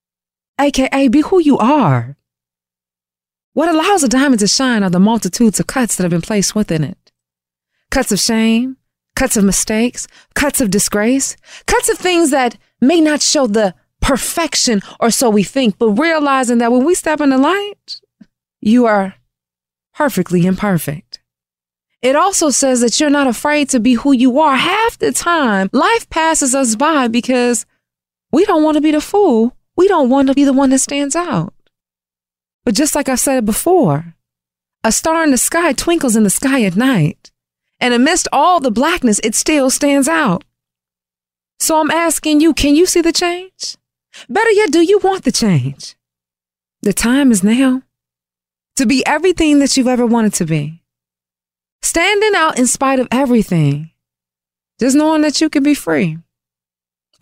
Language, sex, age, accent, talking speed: English, female, 20-39, American, 170 wpm